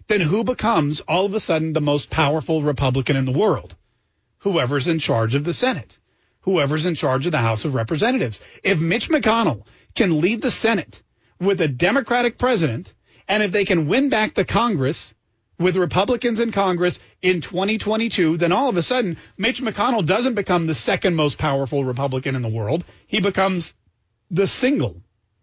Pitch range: 145-215 Hz